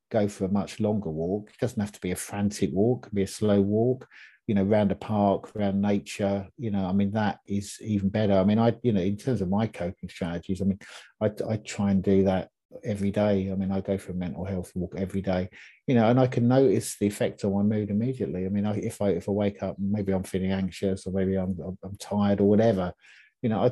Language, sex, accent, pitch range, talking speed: English, male, British, 100-110 Hz, 260 wpm